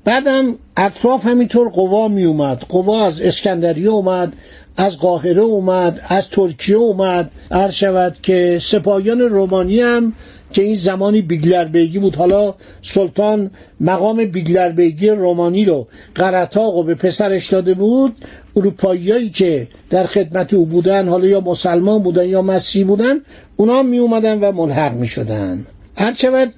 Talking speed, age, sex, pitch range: 140 wpm, 60-79, male, 175-220 Hz